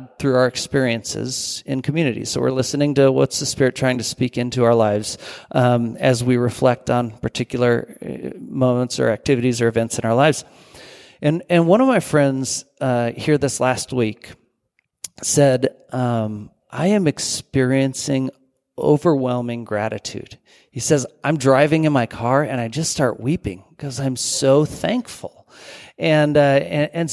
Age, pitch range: 40-59, 125-150 Hz